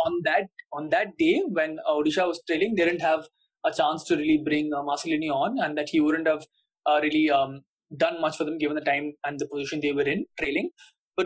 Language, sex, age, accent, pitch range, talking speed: English, male, 20-39, Indian, 150-205 Hz, 235 wpm